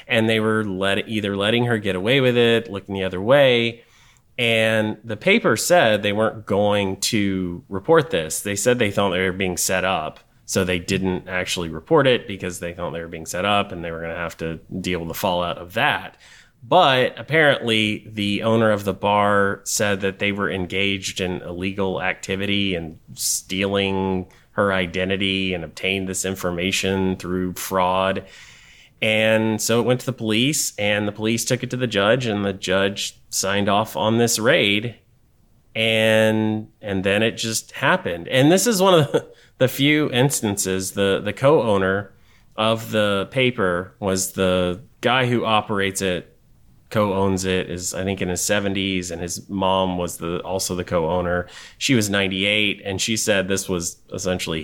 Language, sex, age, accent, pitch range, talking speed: English, male, 30-49, American, 95-110 Hz, 175 wpm